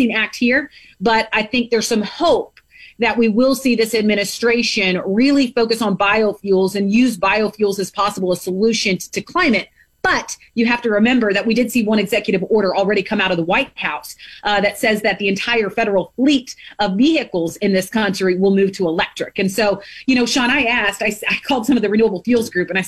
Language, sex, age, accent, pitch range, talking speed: English, female, 30-49, American, 205-255 Hz, 210 wpm